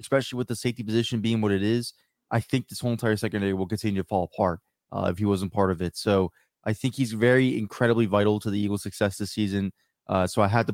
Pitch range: 105-120 Hz